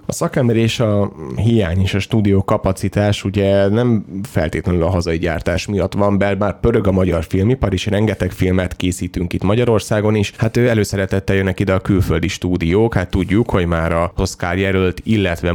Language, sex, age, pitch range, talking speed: Hungarian, male, 30-49, 85-110 Hz, 170 wpm